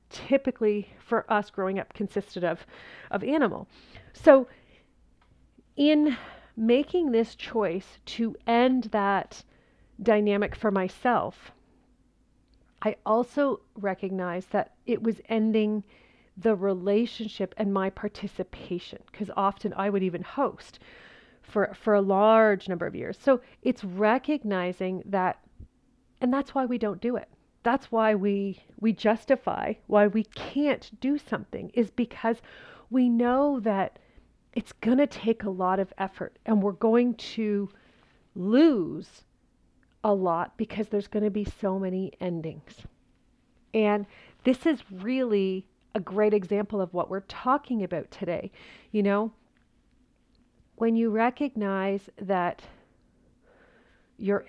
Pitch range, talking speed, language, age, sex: 195-235 Hz, 125 wpm, English, 40-59, female